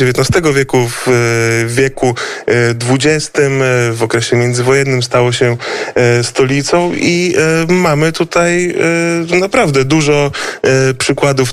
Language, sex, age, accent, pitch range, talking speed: Polish, male, 30-49, native, 125-150 Hz, 90 wpm